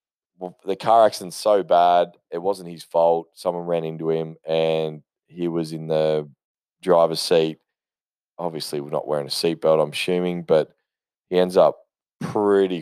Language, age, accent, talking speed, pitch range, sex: English, 20-39, Australian, 160 wpm, 80-95 Hz, male